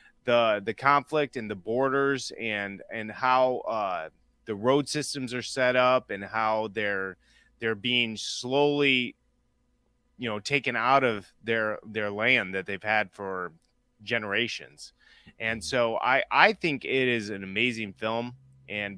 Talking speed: 145 wpm